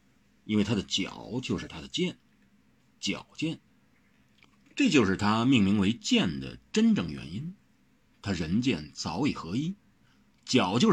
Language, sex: Chinese, male